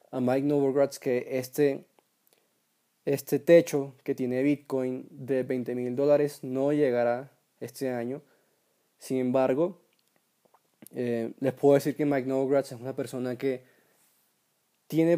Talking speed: 125 wpm